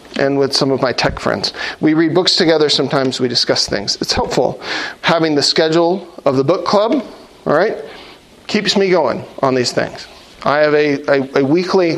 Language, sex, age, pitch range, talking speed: English, male, 40-59, 140-200 Hz, 185 wpm